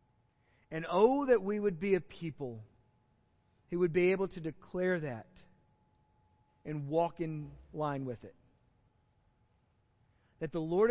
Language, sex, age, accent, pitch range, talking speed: English, male, 40-59, American, 130-175 Hz, 130 wpm